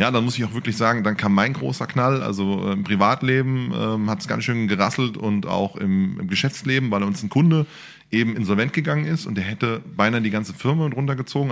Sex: male